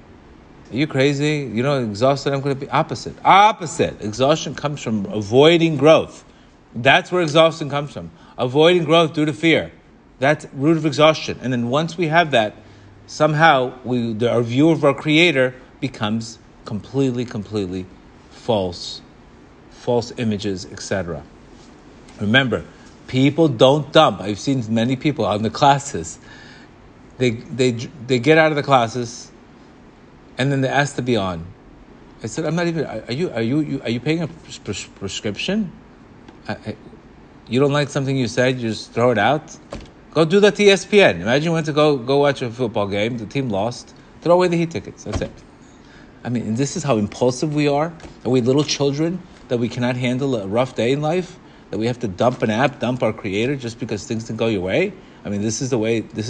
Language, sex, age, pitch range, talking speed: English, male, 40-59, 115-155 Hz, 190 wpm